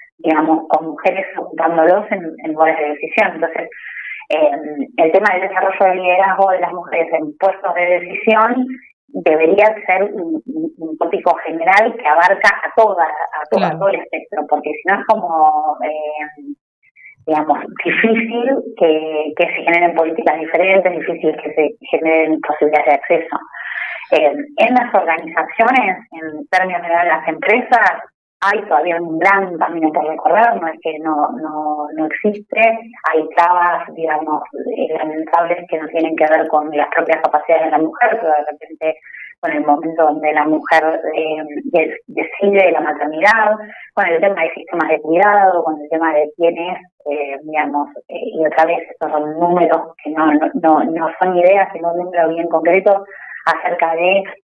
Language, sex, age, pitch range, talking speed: Spanish, female, 20-39, 155-190 Hz, 160 wpm